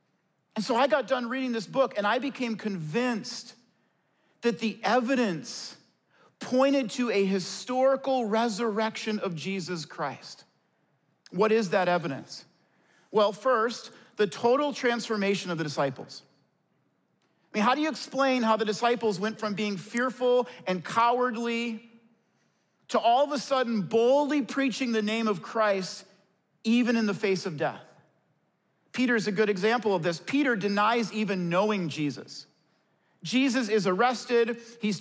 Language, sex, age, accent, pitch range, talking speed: English, male, 40-59, American, 205-250 Hz, 140 wpm